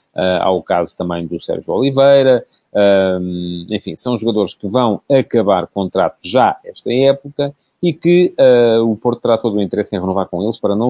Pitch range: 100-130 Hz